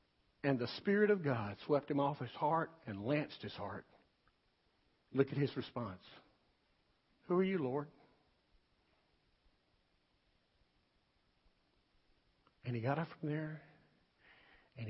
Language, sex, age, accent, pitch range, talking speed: English, male, 60-79, American, 115-170 Hz, 115 wpm